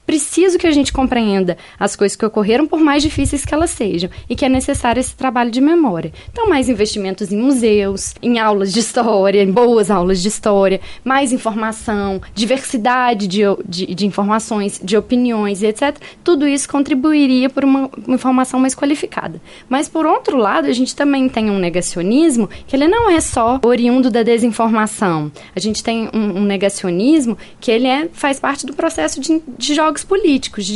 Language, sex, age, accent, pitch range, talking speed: Portuguese, female, 10-29, Brazilian, 210-280 Hz, 175 wpm